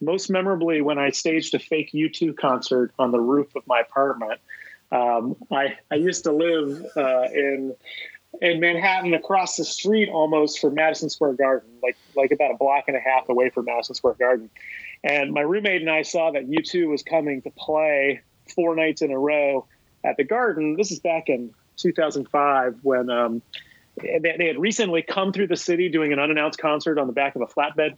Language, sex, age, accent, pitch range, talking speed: English, male, 30-49, American, 135-165 Hz, 195 wpm